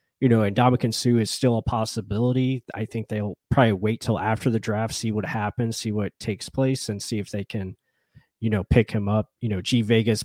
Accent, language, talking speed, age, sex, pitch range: American, English, 230 wpm, 20-39, male, 110-125 Hz